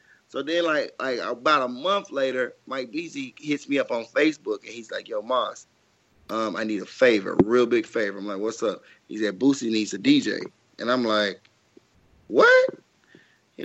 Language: English